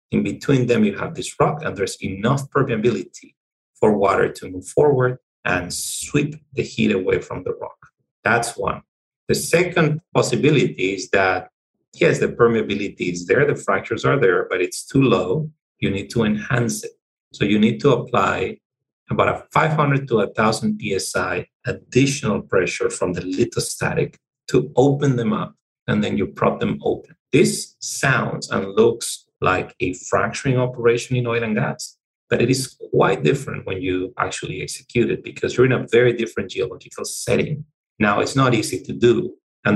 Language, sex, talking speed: English, male, 170 wpm